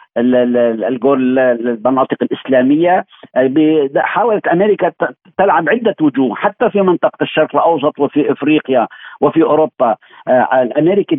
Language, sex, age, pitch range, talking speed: Arabic, male, 50-69, 135-165 Hz, 90 wpm